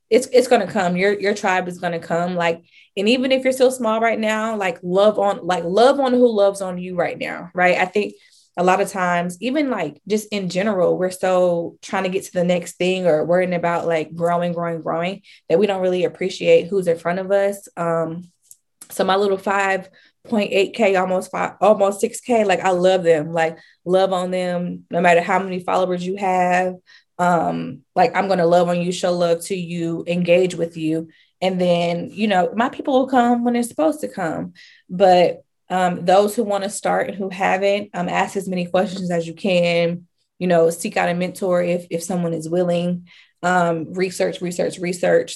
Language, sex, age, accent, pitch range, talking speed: English, female, 20-39, American, 170-195 Hz, 210 wpm